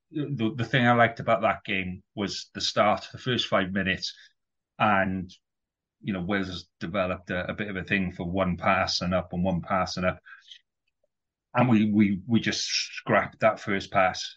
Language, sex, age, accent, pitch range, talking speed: English, male, 30-49, British, 95-110 Hz, 190 wpm